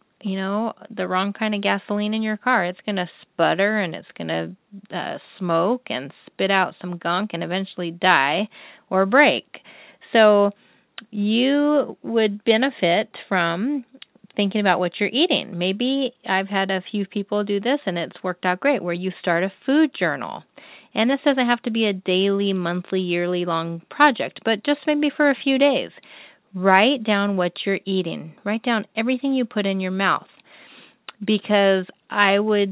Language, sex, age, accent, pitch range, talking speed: English, female, 30-49, American, 175-220 Hz, 170 wpm